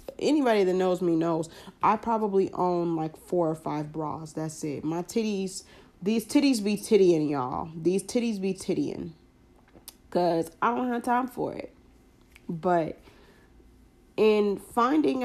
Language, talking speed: English, 140 wpm